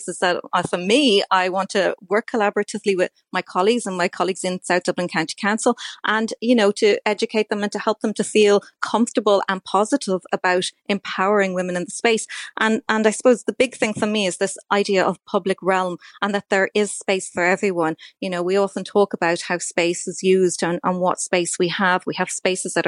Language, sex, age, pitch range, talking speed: English, female, 30-49, 180-220 Hz, 220 wpm